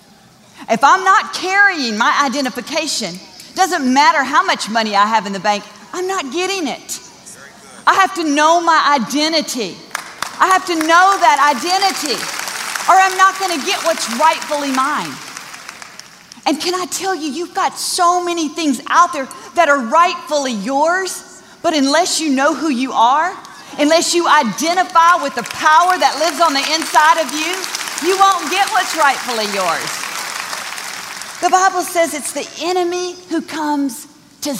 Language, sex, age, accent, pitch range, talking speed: English, female, 40-59, American, 235-345 Hz, 160 wpm